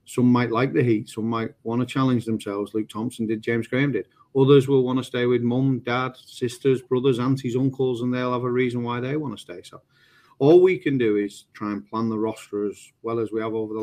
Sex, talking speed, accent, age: male, 245 wpm, British, 30-49